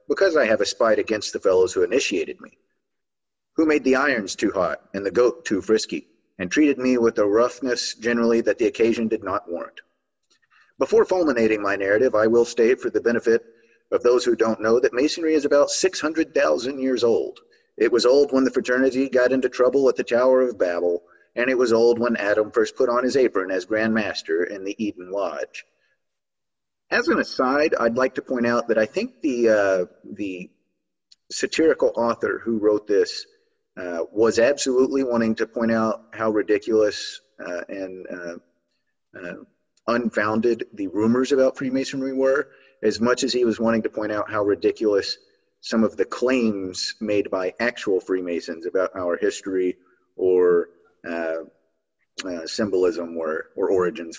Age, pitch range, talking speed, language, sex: 30-49, 105-145 Hz, 175 wpm, English, male